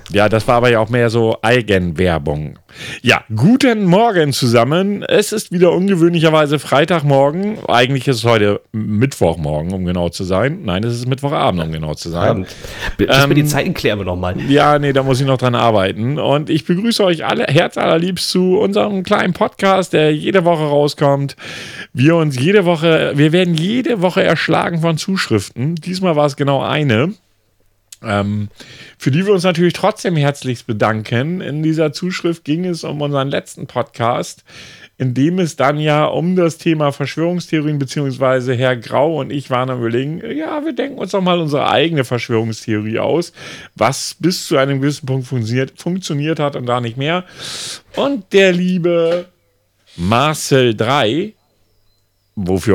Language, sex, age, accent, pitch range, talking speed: German, male, 40-59, German, 110-170 Hz, 165 wpm